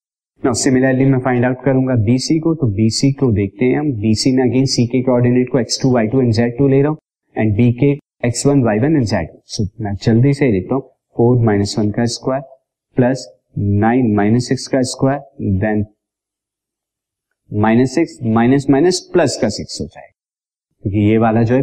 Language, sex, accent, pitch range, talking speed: Hindi, male, native, 110-140 Hz, 110 wpm